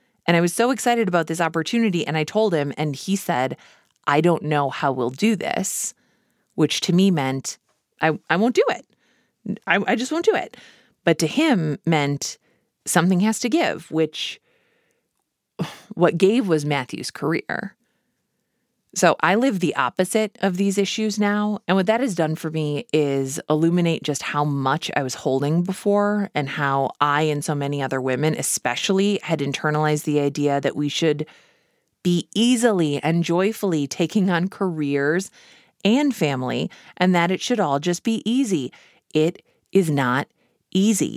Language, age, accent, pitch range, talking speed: English, 30-49, American, 150-205 Hz, 165 wpm